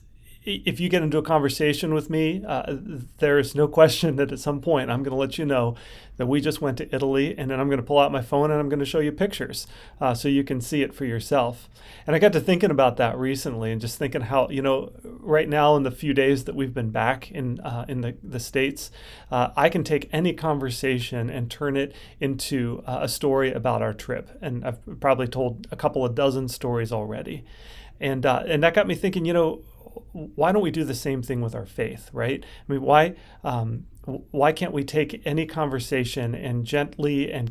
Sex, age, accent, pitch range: male, 30-49, American, 120-150 Hz